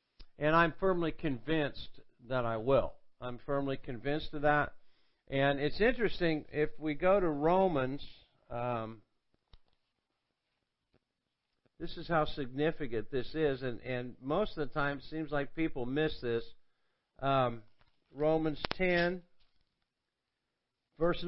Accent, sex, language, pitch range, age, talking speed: American, male, English, 135-170 Hz, 50-69, 120 wpm